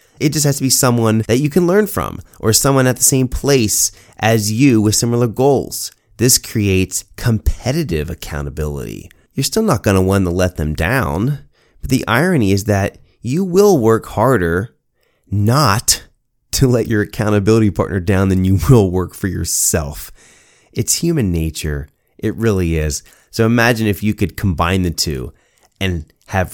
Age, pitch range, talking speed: 30-49, 85-115 Hz, 165 wpm